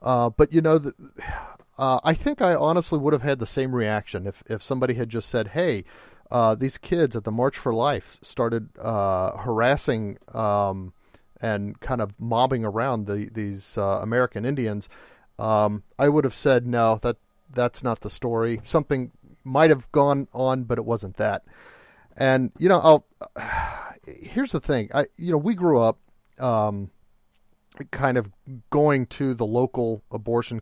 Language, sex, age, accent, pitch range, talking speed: English, male, 40-59, American, 110-140 Hz, 170 wpm